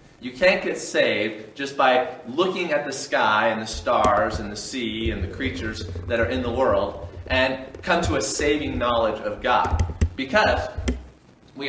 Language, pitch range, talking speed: English, 110-140 Hz, 175 wpm